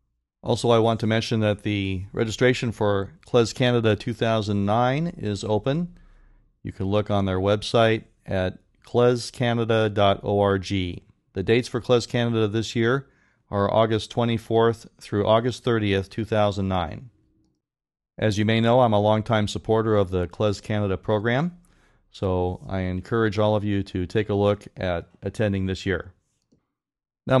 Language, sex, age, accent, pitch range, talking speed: English, male, 40-59, American, 100-120 Hz, 140 wpm